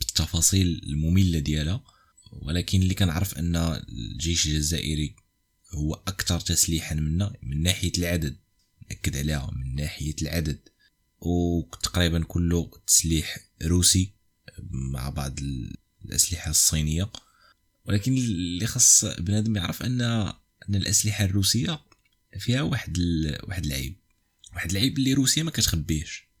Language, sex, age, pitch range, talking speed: Arabic, male, 20-39, 80-105 Hz, 110 wpm